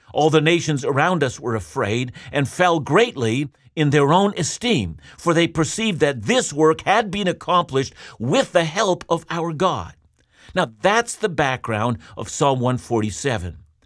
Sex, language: male, English